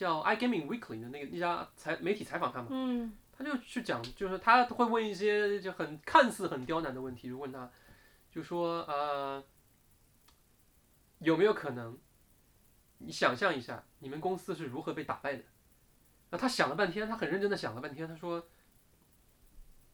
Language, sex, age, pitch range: Chinese, male, 20-39, 135-205 Hz